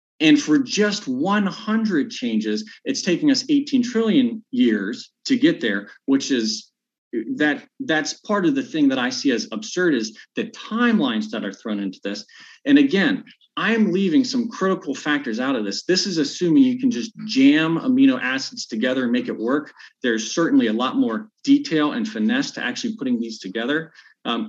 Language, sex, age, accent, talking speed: English, male, 40-59, American, 180 wpm